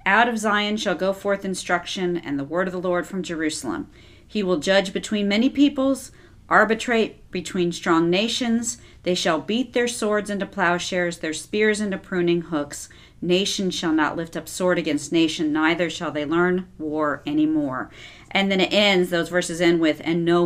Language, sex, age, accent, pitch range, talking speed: English, female, 50-69, American, 170-205 Hz, 180 wpm